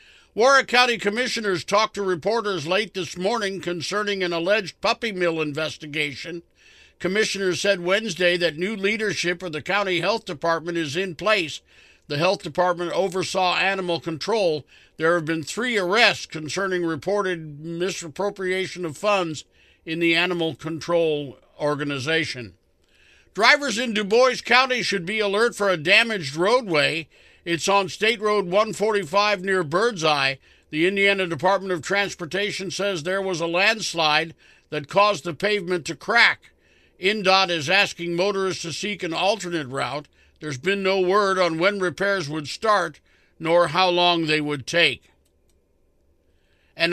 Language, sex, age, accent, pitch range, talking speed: English, male, 50-69, American, 165-200 Hz, 140 wpm